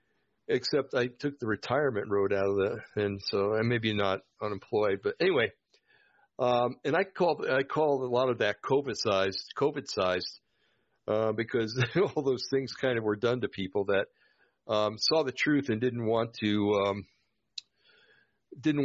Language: English